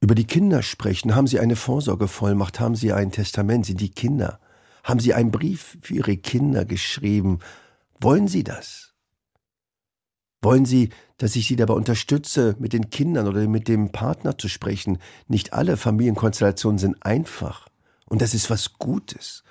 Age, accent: 50-69, German